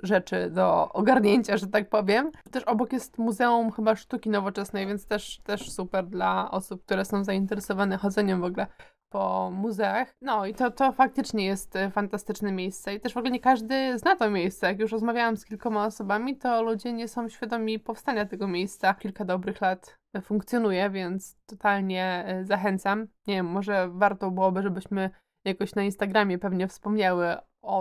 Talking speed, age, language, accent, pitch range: 165 wpm, 20-39, Polish, native, 195-230 Hz